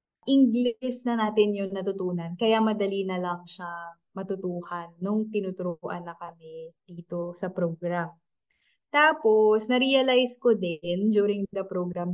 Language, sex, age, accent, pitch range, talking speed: Filipino, female, 20-39, native, 180-225 Hz, 125 wpm